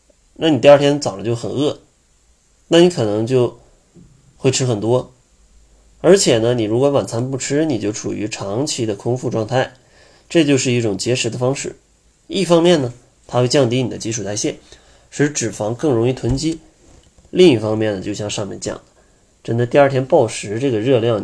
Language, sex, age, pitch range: Chinese, male, 20-39, 105-140 Hz